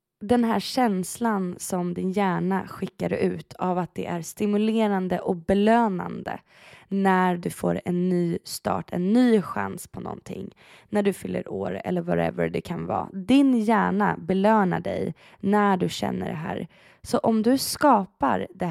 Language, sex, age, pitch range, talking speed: Swedish, female, 20-39, 180-220 Hz, 155 wpm